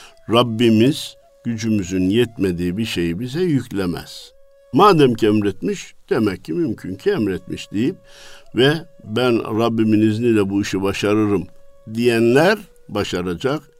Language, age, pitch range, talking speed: Turkish, 60-79, 110-180 Hz, 110 wpm